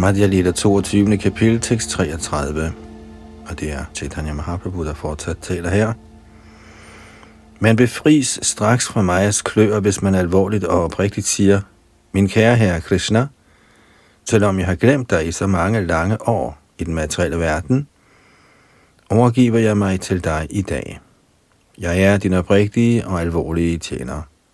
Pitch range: 85-110 Hz